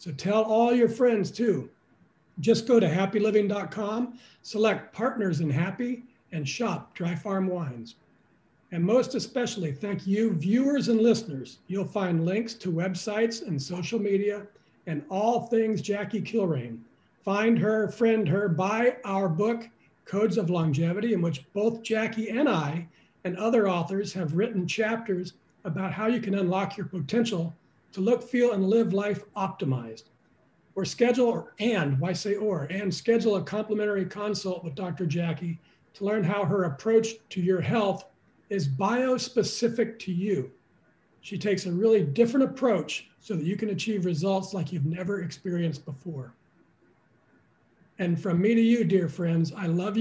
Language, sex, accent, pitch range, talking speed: English, male, American, 175-220 Hz, 155 wpm